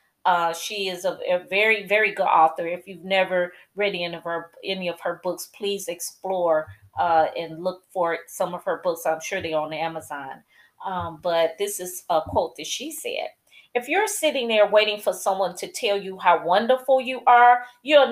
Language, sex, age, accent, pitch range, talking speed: English, female, 30-49, American, 180-265 Hz, 195 wpm